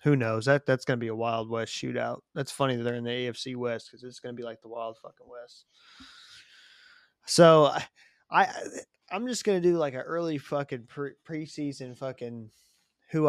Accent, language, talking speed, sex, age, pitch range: American, English, 205 wpm, male, 20-39, 115-135 Hz